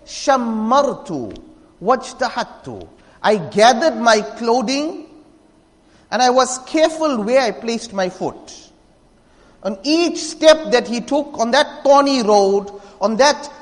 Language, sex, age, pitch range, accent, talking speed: English, male, 50-69, 215-285 Hz, Indian, 110 wpm